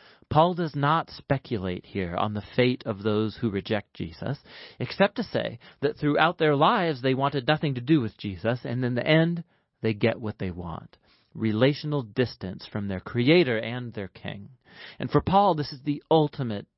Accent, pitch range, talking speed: American, 110-155 Hz, 180 wpm